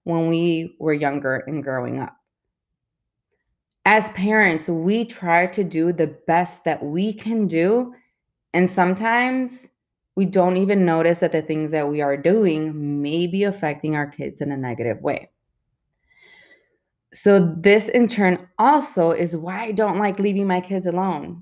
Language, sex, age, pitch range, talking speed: English, female, 20-39, 155-190 Hz, 155 wpm